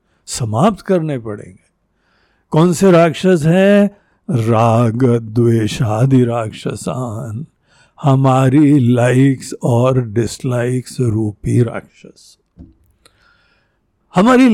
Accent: native